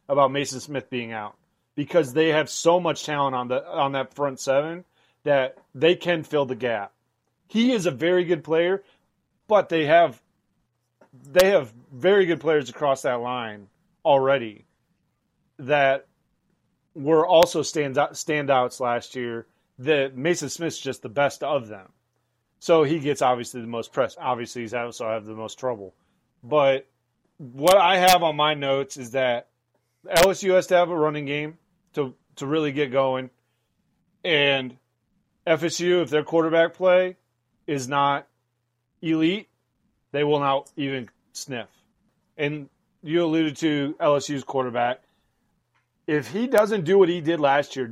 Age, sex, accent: 30-49, male, American